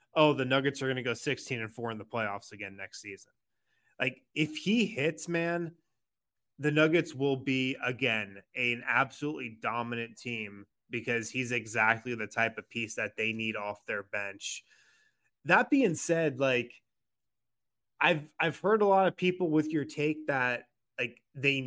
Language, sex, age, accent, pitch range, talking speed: English, male, 20-39, American, 120-155 Hz, 165 wpm